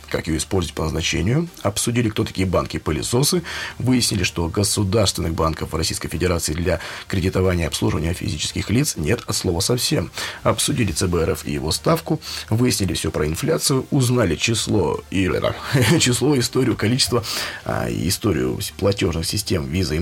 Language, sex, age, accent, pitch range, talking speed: Russian, male, 30-49, native, 95-125 Hz, 135 wpm